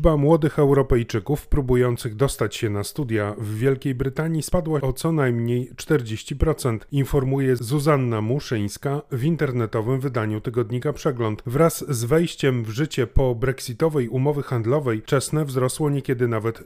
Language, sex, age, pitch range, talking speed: Polish, male, 30-49, 120-145 Hz, 130 wpm